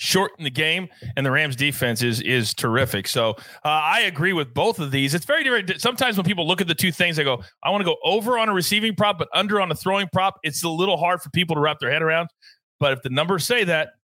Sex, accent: male, American